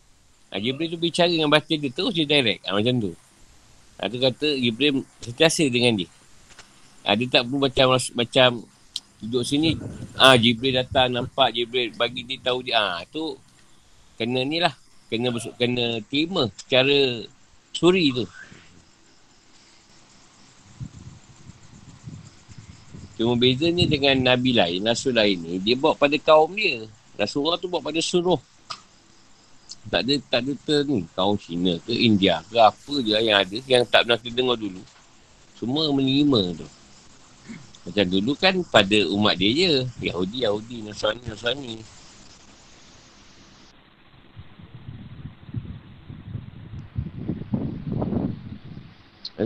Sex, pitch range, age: male, 105-150 Hz, 50-69